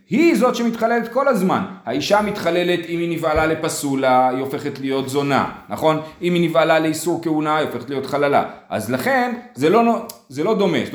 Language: Hebrew